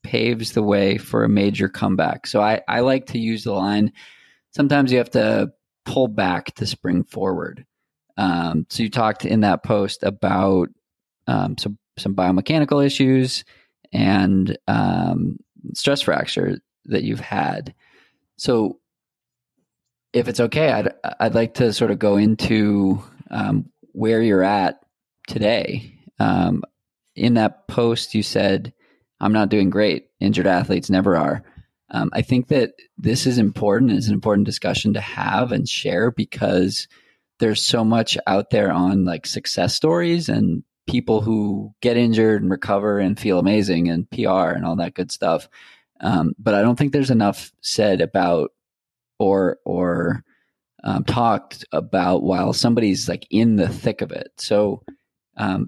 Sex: male